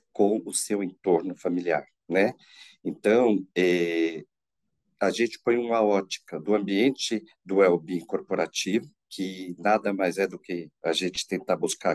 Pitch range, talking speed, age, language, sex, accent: 95-130 Hz, 140 wpm, 50-69, Portuguese, male, Brazilian